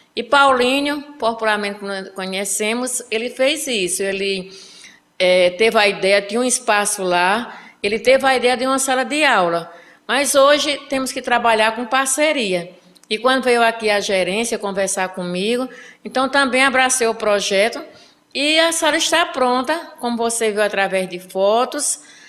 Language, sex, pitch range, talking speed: Portuguese, female, 190-245 Hz, 150 wpm